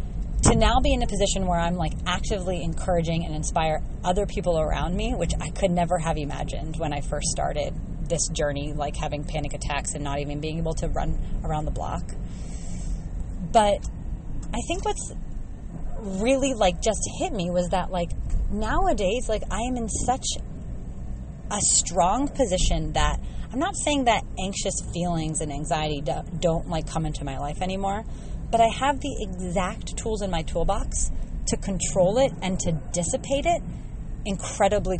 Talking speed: 170 wpm